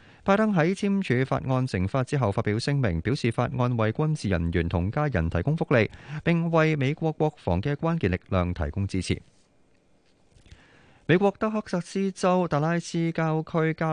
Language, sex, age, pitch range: Chinese, male, 30-49, 100-145 Hz